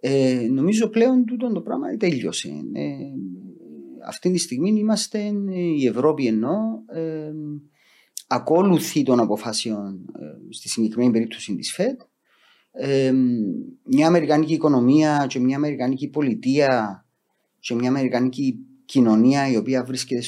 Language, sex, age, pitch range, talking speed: Greek, male, 30-49, 115-175 Hz, 125 wpm